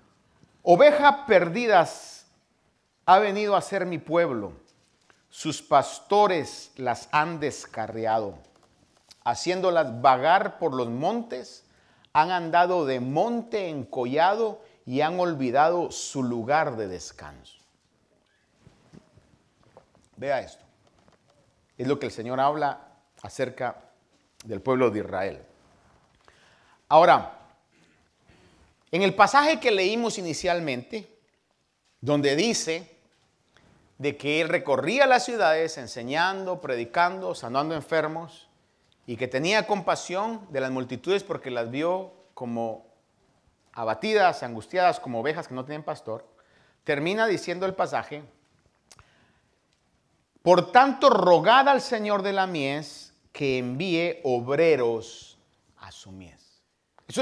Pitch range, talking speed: 125-185 Hz, 105 wpm